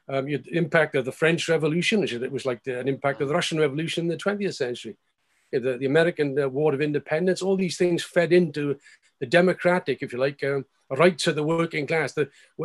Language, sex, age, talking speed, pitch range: English, male, 50-69, 230 wpm, 140-180 Hz